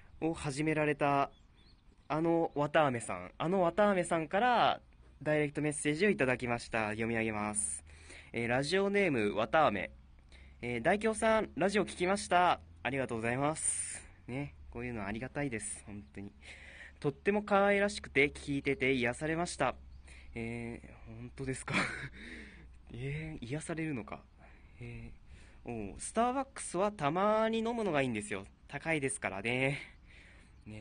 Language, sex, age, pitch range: Japanese, male, 20-39, 105-160 Hz